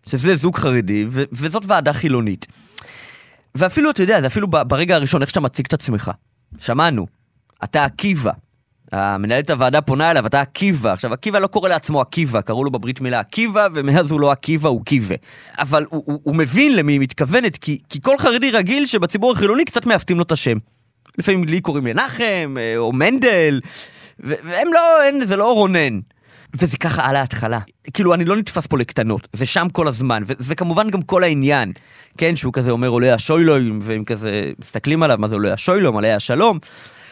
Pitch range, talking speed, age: 120-180 Hz, 180 wpm, 20-39